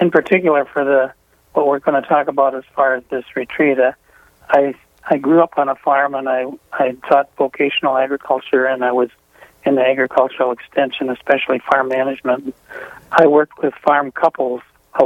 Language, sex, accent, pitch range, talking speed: English, male, American, 130-140 Hz, 180 wpm